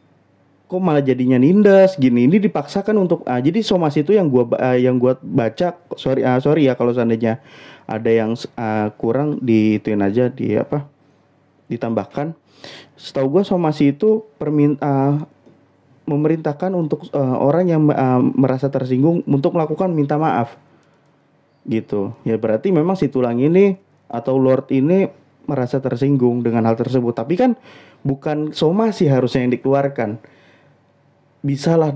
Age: 30-49